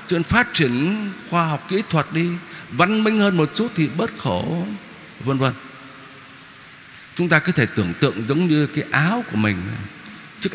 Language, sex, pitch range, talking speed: Vietnamese, male, 135-200 Hz, 170 wpm